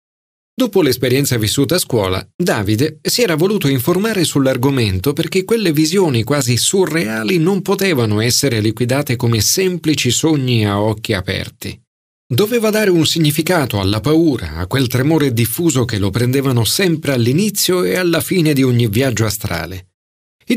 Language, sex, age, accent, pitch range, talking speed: Italian, male, 40-59, native, 110-165 Hz, 145 wpm